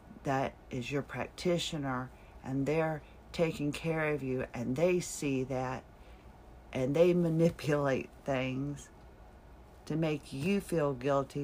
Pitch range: 125-165 Hz